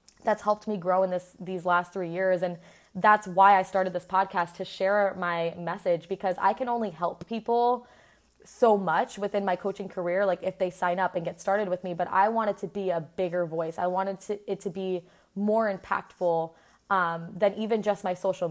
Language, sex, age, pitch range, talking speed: English, female, 20-39, 175-200 Hz, 215 wpm